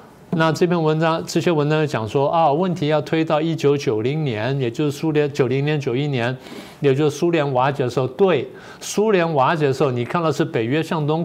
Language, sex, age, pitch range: Chinese, male, 50-69, 135-165 Hz